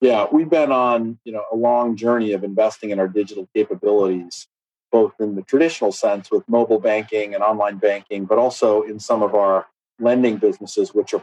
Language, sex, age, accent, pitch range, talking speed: English, male, 40-59, American, 100-115 Hz, 190 wpm